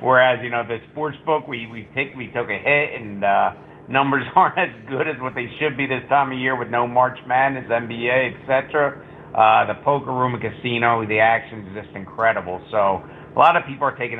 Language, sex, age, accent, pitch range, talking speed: English, male, 50-69, American, 125-145 Hz, 220 wpm